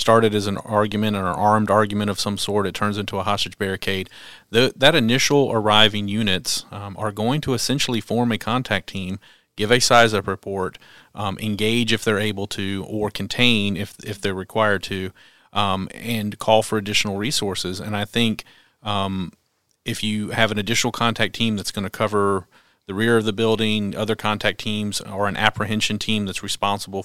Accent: American